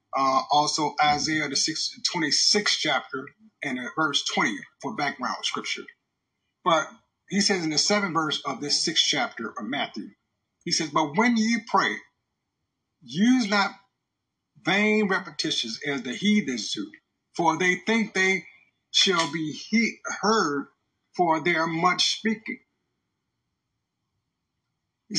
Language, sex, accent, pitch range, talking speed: English, male, American, 155-210 Hz, 125 wpm